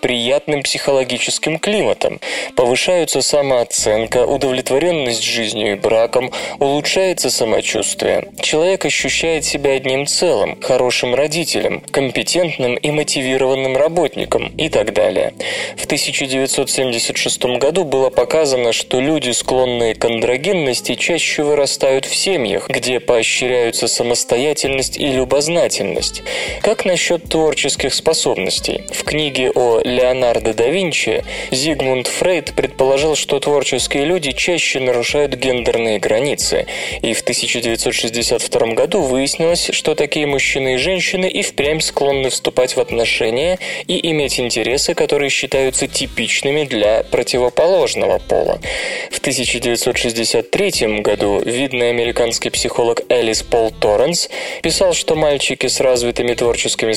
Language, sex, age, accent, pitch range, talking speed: Russian, male, 20-39, native, 125-180 Hz, 110 wpm